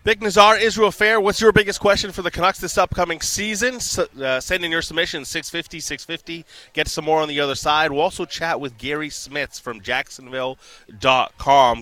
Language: English